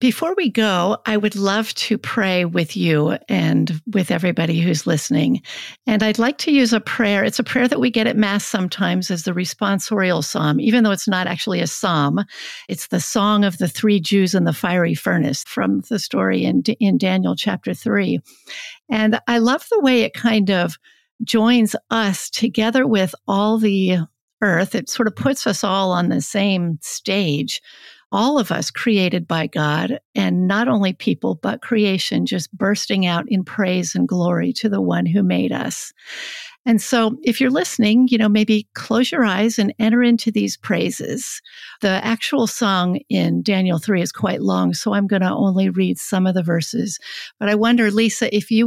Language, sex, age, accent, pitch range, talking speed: English, female, 50-69, American, 180-230 Hz, 185 wpm